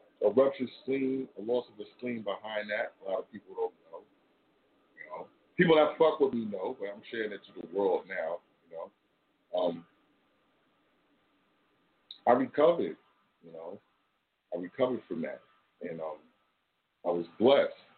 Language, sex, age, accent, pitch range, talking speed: English, male, 40-59, American, 95-145 Hz, 160 wpm